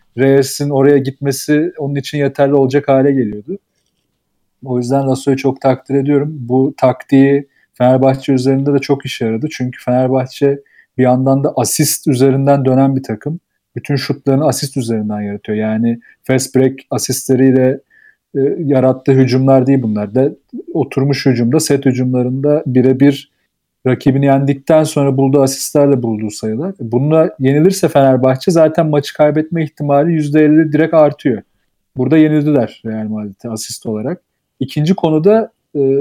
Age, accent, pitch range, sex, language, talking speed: 40-59, native, 130-145 Hz, male, Turkish, 135 wpm